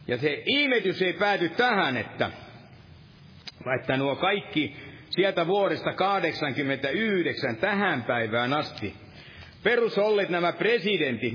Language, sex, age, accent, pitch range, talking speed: Finnish, male, 60-79, native, 140-195 Hz, 100 wpm